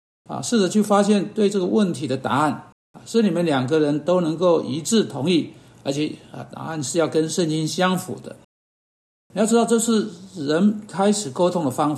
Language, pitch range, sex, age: Chinese, 140-185 Hz, male, 60-79